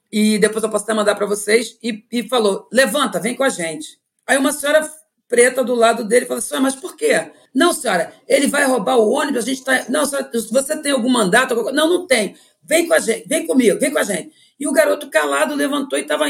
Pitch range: 205-275 Hz